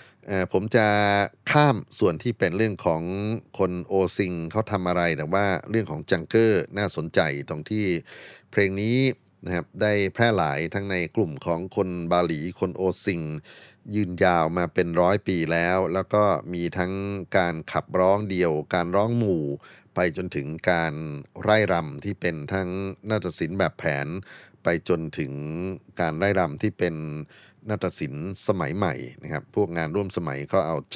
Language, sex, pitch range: Thai, male, 85-105 Hz